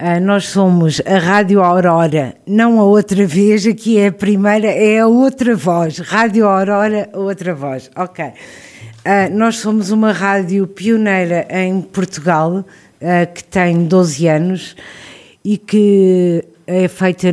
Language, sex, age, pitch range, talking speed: Portuguese, female, 50-69, 180-210 Hz, 140 wpm